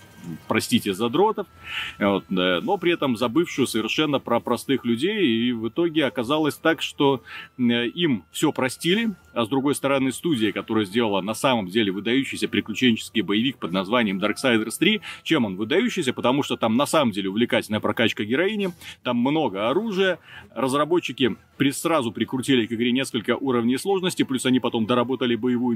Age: 30-49